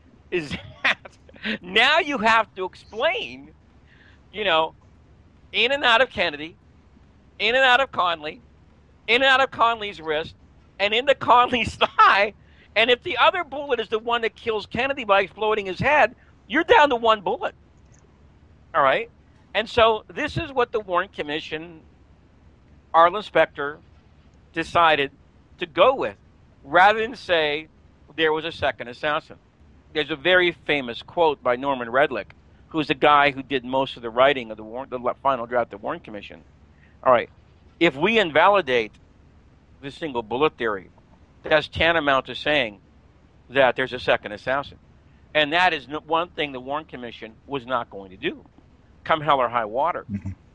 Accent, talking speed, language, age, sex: American, 165 wpm, English, 50-69, male